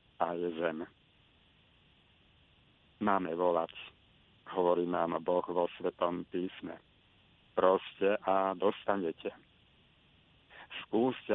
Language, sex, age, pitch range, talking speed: Slovak, male, 50-69, 90-100 Hz, 80 wpm